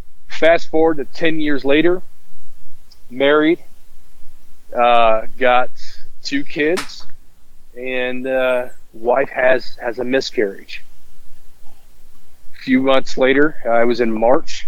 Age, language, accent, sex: 40-59, English, American, male